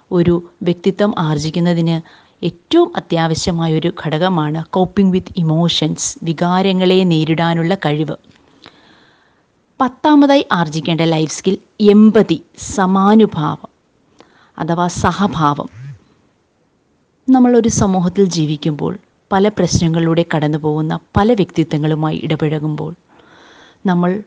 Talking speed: 75 wpm